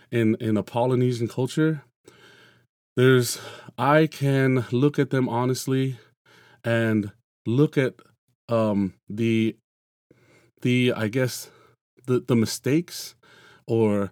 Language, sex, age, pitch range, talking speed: English, male, 30-49, 110-140 Hz, 100 wpm